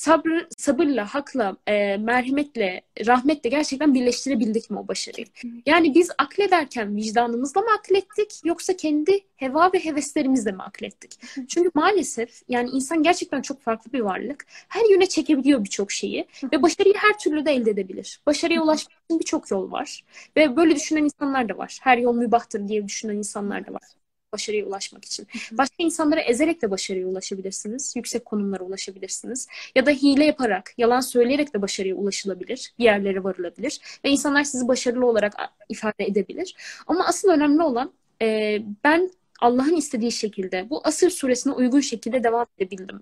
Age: 10-29